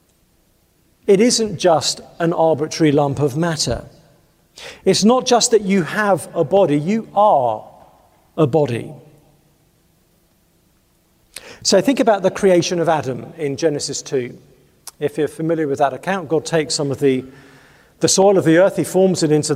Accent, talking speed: British, 155 wpm